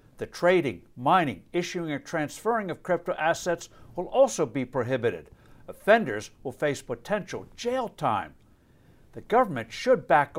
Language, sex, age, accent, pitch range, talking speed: English, male, 60-79, American, 135-195 Hz, 135 wpm